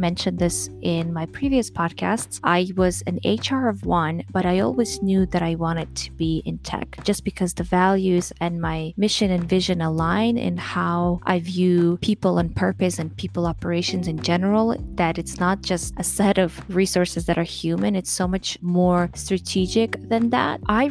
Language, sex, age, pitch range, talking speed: English, female, 20-39, 170-195 Hz, 185 wpm